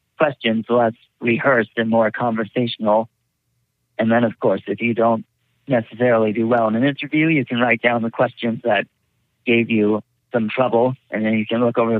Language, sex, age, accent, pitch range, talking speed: English, male, 40-59, American, 115-125 Hz, 180 wpm